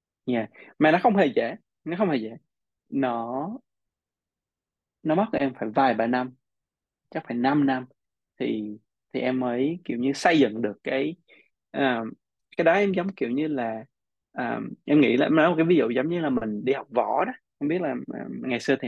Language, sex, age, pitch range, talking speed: Vietnamese, male, 20-39, 115-160 Hz, 200 wpm